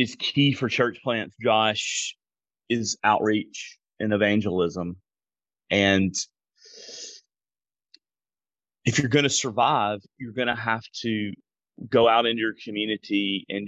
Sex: male